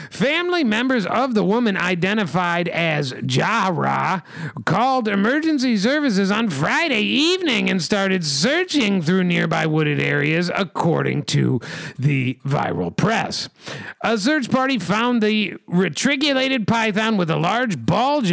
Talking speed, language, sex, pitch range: 120 wpm, English, male, 160-230 Hz